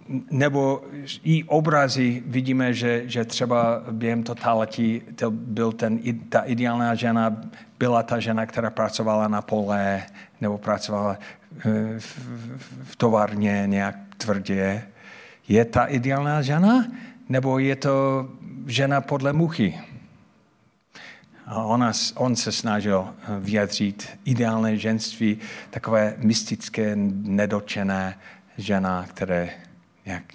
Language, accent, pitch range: Czech, native, 110-165 Hz